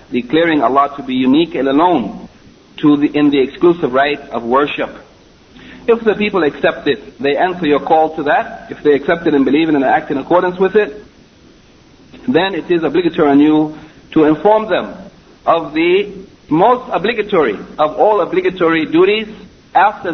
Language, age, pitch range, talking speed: English, 60-79, 145-205 Hz, 165 wpm